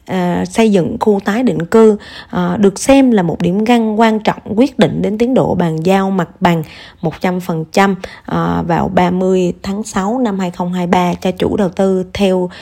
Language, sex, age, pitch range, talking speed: Vietnamese, female, 20-39, 180-220 Hz, 165 wpm